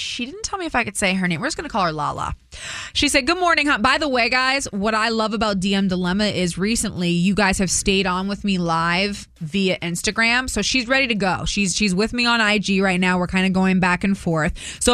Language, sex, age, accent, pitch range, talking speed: English, female, 20-39, American, 185-245 Hz, 260 wpm